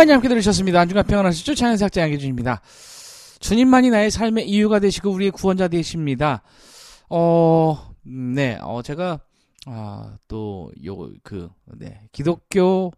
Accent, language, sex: native, Korean, male